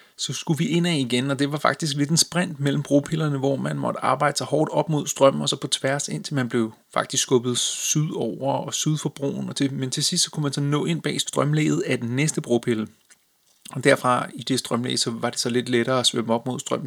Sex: male